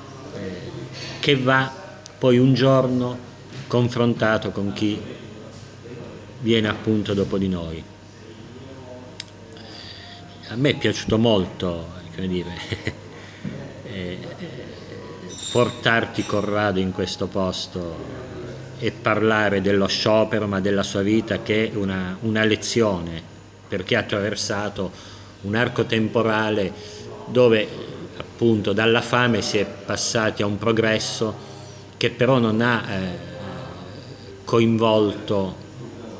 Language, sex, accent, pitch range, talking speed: Italian, male, native, 100-115 Hz, 100 wpm